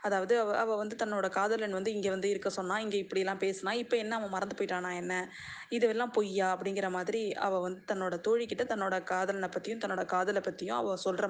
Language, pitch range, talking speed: Tamil, 195-245 Hz, 185 wpm